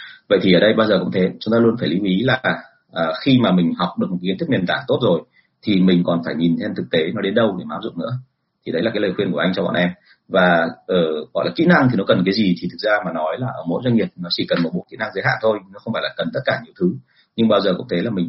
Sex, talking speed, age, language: male, 330 wpm, 30-49, Vietnamese